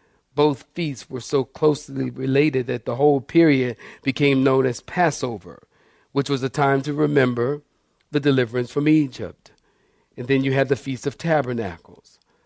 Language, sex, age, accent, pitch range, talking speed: English, male, 40-59, American, 130-155 Hz, 155 wpm